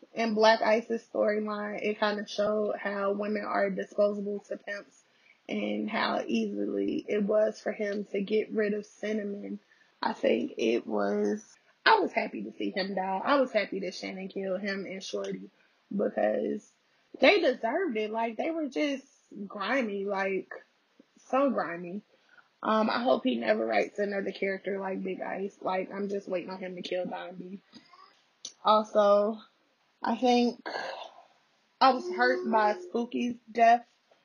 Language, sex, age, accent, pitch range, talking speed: English, female, 20-39, American, 190-230 Hz, 150 wpm